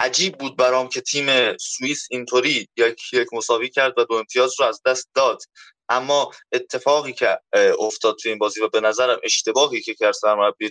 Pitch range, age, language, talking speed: 115-150 Hz, 20-39, Persian, 175 wpm